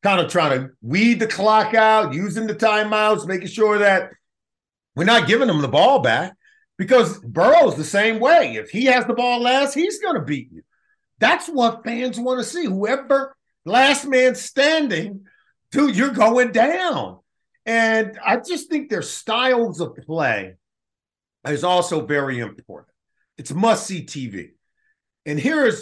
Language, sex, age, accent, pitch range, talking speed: English, male, 50-69, American, 170-245 Hz, 160 wpm